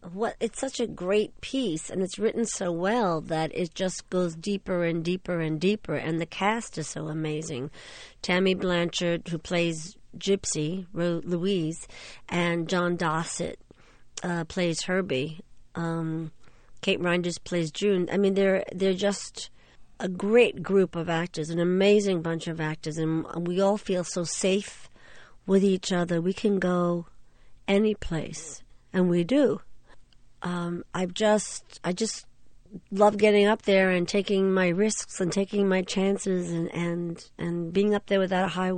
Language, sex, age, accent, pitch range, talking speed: English, female, 50-69, American, 170-210 Hz, 160 wpm